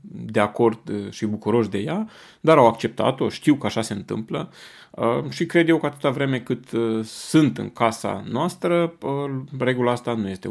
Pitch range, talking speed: 110-160 Hz, 165 wpm